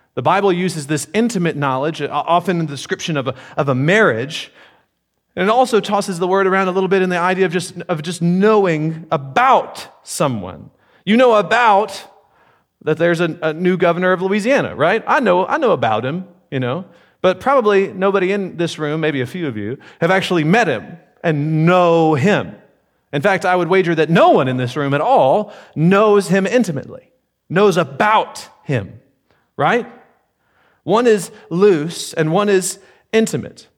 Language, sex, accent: English, male, American